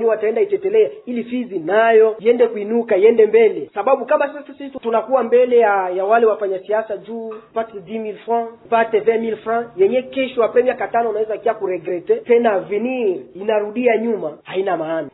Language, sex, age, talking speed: French, male, 30-49, 165 wpm